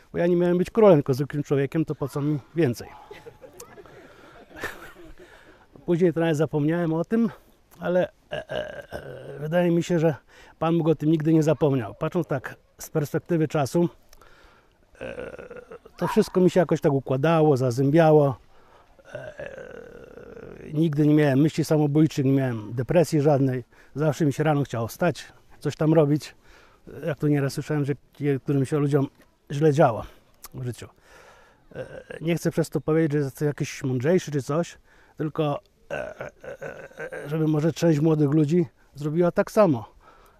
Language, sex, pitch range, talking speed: Polish, male, 145-170 Hz, 145 wpm